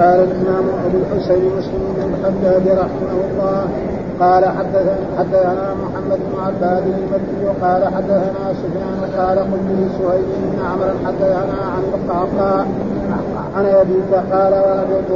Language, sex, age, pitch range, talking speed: Arabic, male, 50-69, 190-195 Hz, 125 wpm